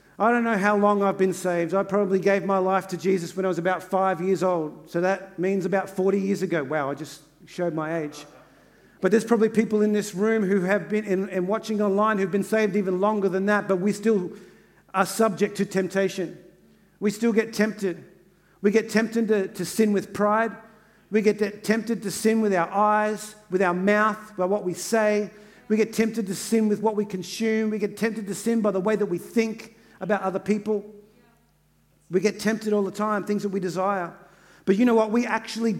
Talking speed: 215 wpm